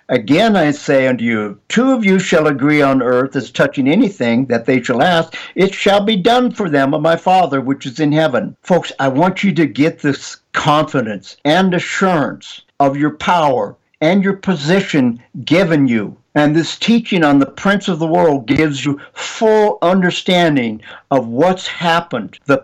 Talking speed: 180 wpm